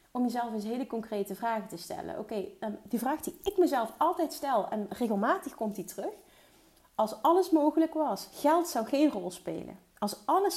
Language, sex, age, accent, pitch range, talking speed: Dutch, female, 30-49, Dutch, 195-250 Hz, 180 wpm